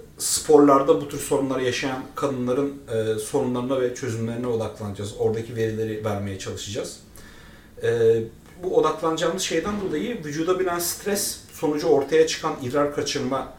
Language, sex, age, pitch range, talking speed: Turkish, male, 40-59, 115-165 Hz, 125 wpm